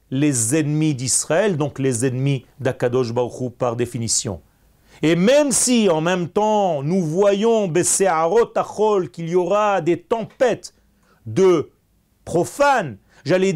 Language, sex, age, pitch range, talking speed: French, male, 40-59, 145-195 Hz, 115 wpm